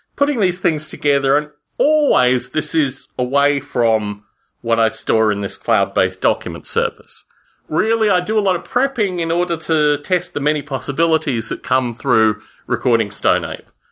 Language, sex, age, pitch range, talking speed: English, male, 30-49, 125-195 Hz, 160 wpm